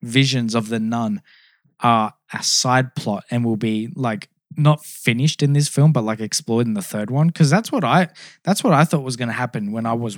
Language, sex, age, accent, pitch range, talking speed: English, male, 10-29, Australian, 115-155 Hz, 230 wpm